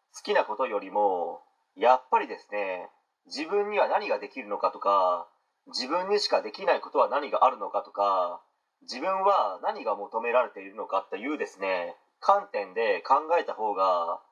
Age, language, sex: 40-59, Japanese, male